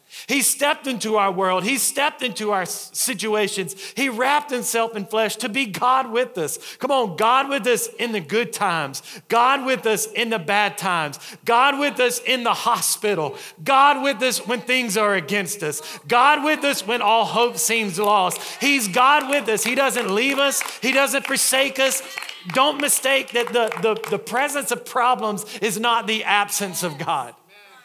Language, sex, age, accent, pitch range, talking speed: English, male, 40-59, American, 205-260 Hz, 180 wpm